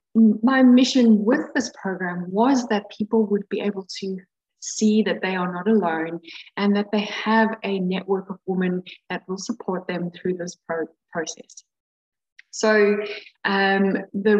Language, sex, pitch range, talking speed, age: English, female, 180-220 Hz, 150 wpm, 10-29